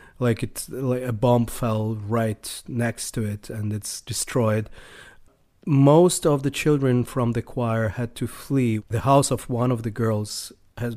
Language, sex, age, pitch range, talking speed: English, male, 30-49, 110-140 Hz, 170 wpm